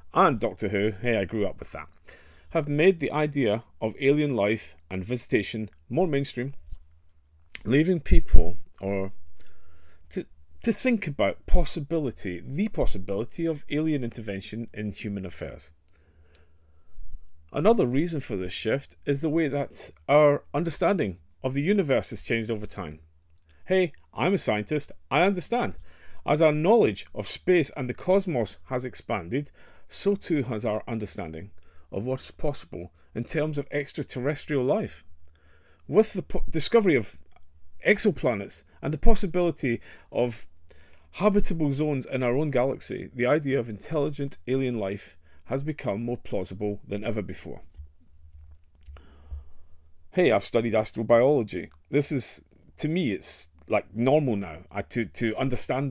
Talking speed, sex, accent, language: 140 wpm, male, British, English